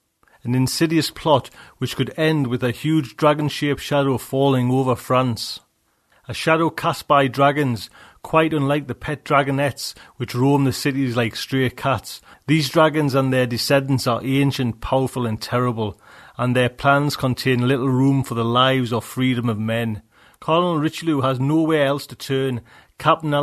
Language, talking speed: English, 160 wpm